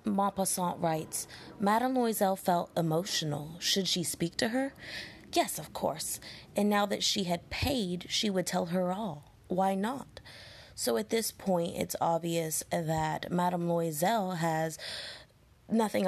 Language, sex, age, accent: English, female, 20-39, American